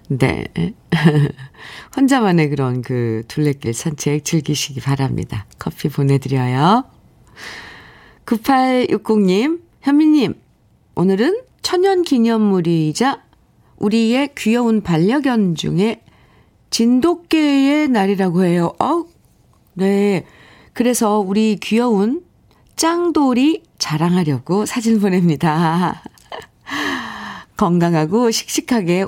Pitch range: 165-255 Hz